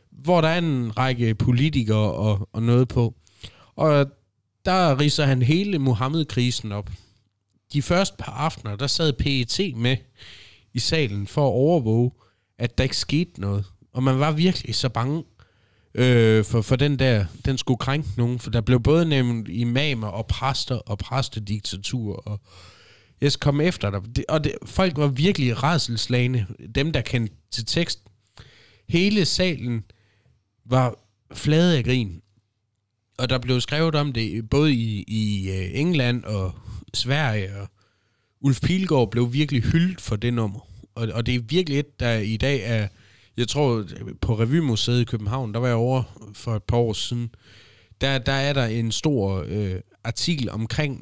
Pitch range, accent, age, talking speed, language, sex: 105-135 Hz, native, 30-49, 165 wpm, Danish, male